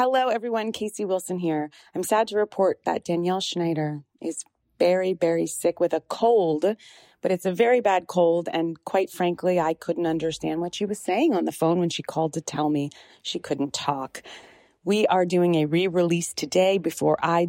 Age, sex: 30-49, female